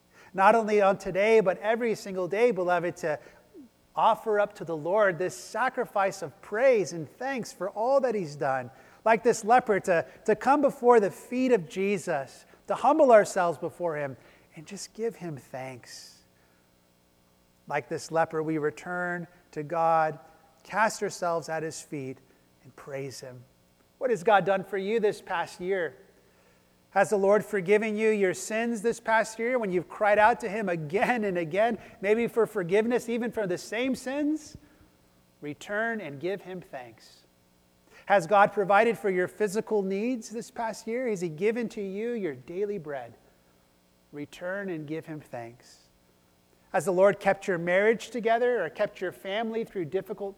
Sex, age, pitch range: male, 30-49, 155-220 Hz